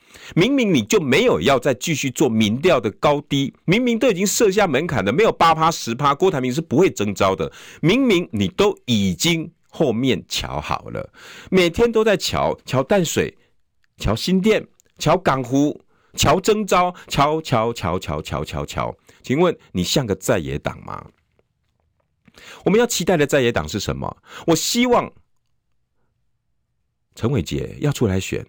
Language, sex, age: Chinese, male, 50-69